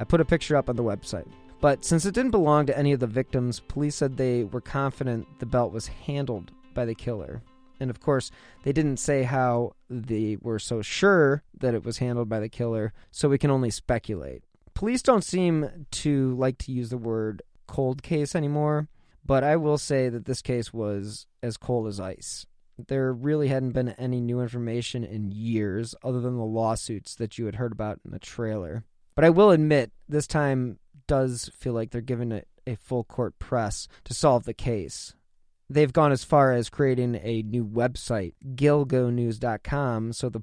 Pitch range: 115-140 Hz